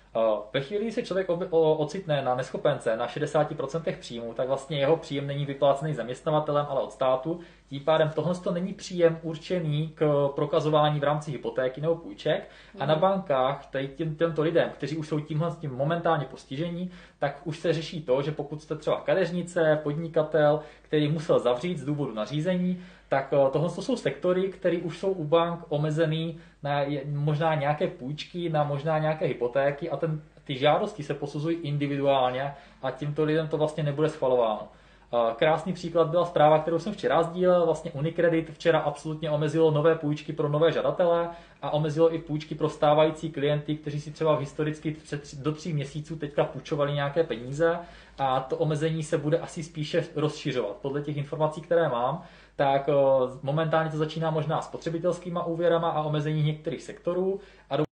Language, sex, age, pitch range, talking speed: Czech, male, 20-39, 145-165 Hz, 165 wpm